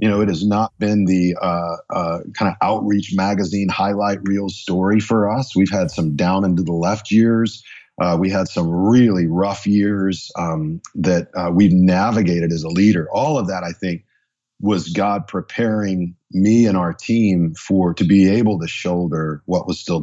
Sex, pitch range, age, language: male, 90-125 Hz, 40-59, English